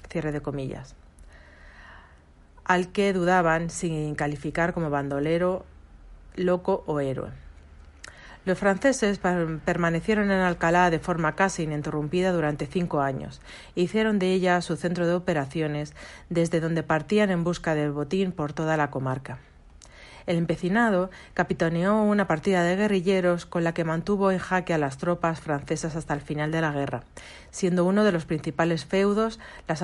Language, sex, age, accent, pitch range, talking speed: Spanish, female, 40-59, Spanish, 150-185 Hz, 145 wpm